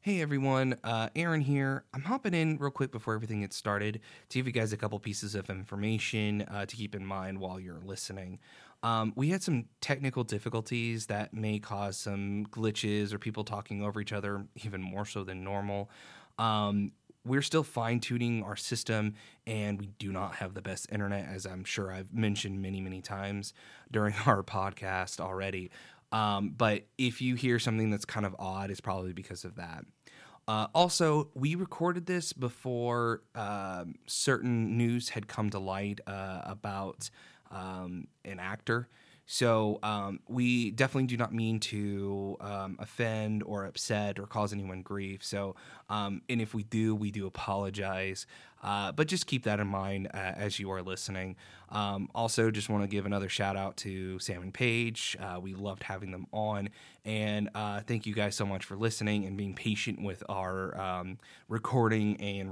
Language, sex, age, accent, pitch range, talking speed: English, male, 20-39, American, 95-115 Hz, 180 wpm